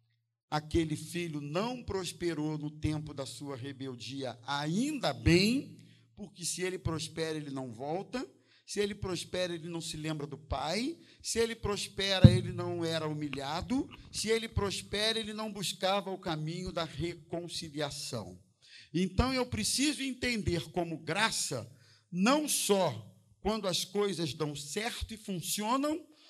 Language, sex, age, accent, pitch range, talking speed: Portuguese, male, 50-69, Brazilian, 150-210 Hz, 135 wpm